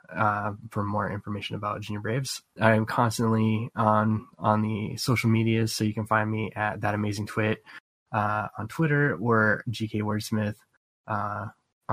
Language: English